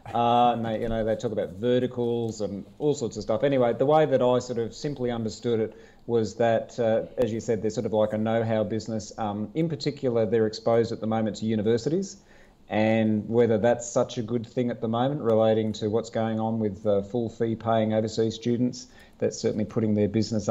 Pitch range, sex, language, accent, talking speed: 110-125 Hz, male, English, Australian, 215 wpm